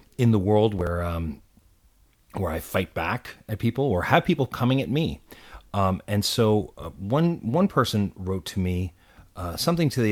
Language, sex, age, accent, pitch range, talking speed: English, male, 40-59, American, 95-120 Hz, 185 wpm